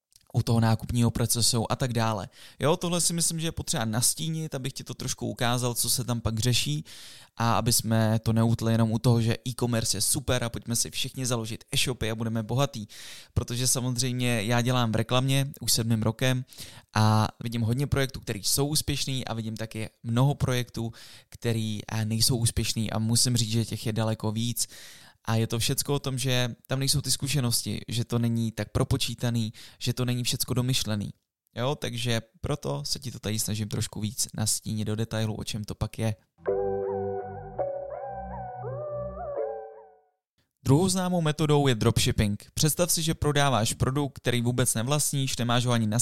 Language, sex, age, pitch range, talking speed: Czech, male, 20-39, 115-140 Hz, 175 wpm